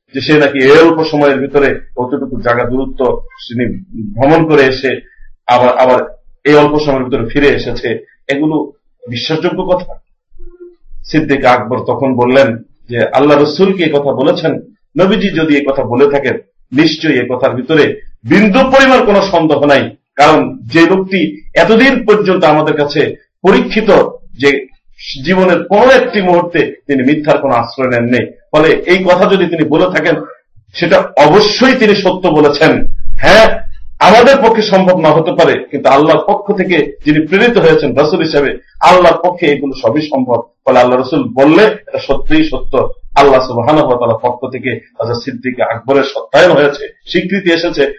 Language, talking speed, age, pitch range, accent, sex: Bengali, 120 wpm, 50-69, 135-185 Hz, native, male